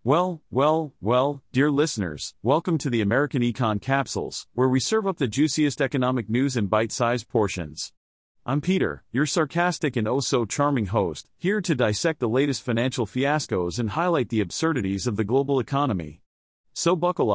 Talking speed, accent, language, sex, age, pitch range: 160 wpm, American, English, male, 40-59, 115-150 Hz